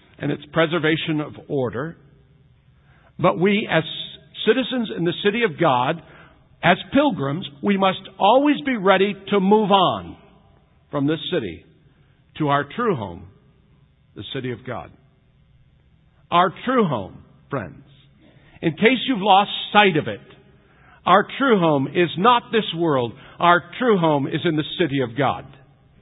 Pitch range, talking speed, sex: 135-200 Hz, 145 wpm, male